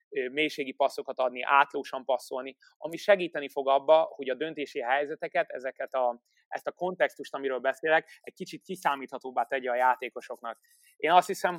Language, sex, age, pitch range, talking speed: Hungarian, male, 20-39, 130-155 Hz, 150 wpm